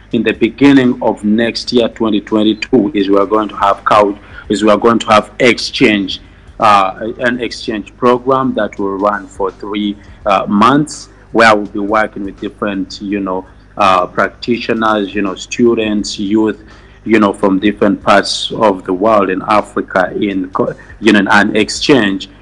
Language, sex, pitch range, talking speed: Russian, male, 100-110 Hz, 165 wpm